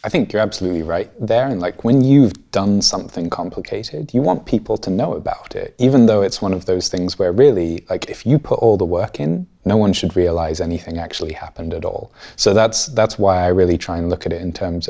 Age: 20-39